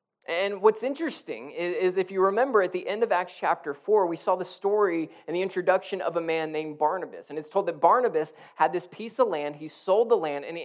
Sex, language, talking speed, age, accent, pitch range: male, English, 230 wpm, 20-39, American, 150-195 Hz